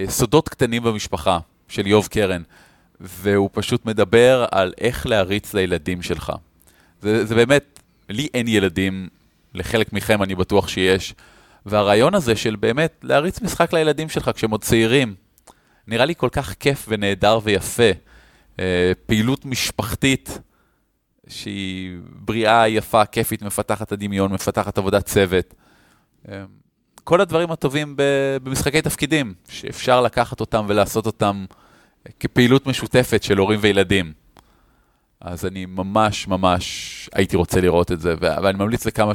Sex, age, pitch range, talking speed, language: male, 20-39, 95-120 Hz, 125 wpm, Hebrew